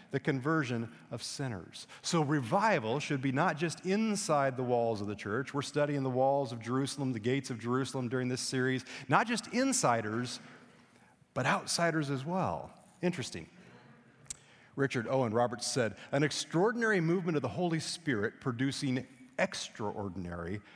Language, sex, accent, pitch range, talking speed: English, male, American, 120-155 Hz, 145 wpm